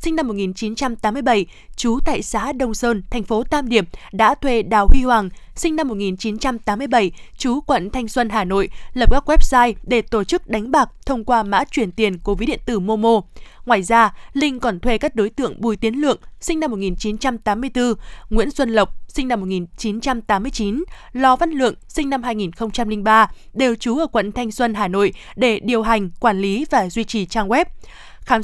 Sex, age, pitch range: female, 20-39, 215-260 Hz